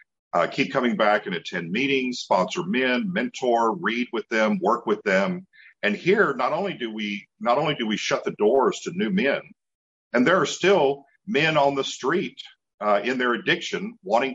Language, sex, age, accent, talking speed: English, male, 50-69, American, 190 wpm